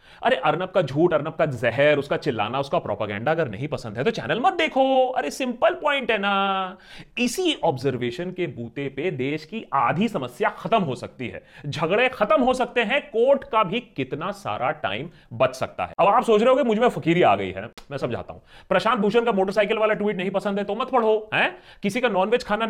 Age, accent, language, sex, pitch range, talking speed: 30-49, native, Hindi, male, 170-260 Hz, 215 wpm